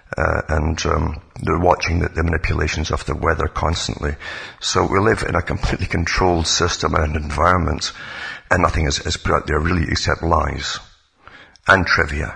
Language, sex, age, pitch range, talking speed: English, male, 60-79, 80-90 Hz, 165 wpm